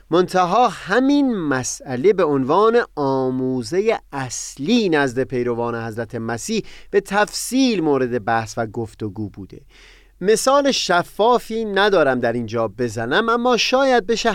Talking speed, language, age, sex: 115 wpm, Persian, 30-49, male